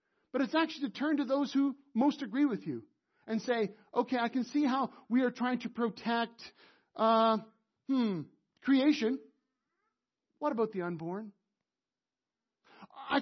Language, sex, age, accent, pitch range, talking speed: English, male, 50-69, American, 210-275 Hz, 145 wpm